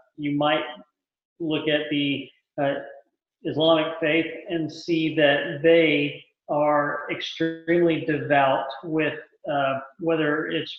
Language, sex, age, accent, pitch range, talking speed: English, male, 40-59, American, 135-160 Hz, 105 wpm